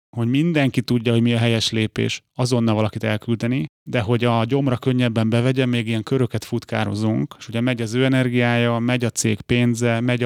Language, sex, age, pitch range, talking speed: Hungarian, male, 30-49, 115-130 Hz, 185 wpm